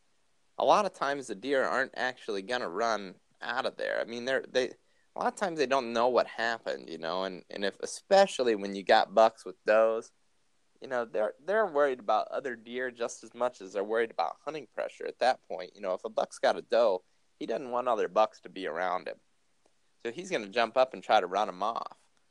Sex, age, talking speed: male, 20-39, 235 wpm